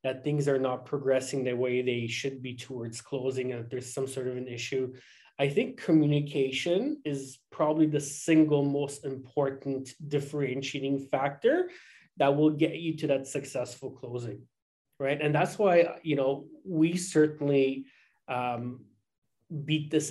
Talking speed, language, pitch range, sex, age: 145 wpm, English, 135-155 Hz, male, 20-39